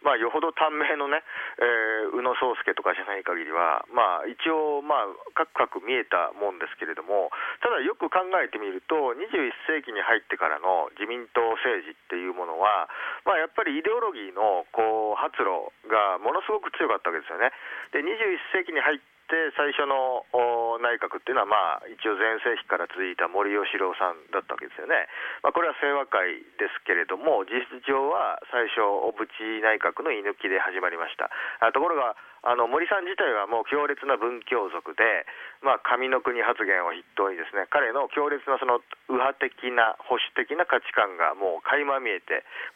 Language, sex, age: Japanese, male, 40-59